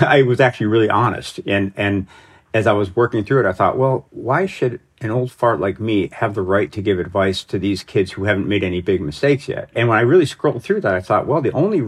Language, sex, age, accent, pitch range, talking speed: English, male, 50-69, American, 95-125 Hz, 260 wpm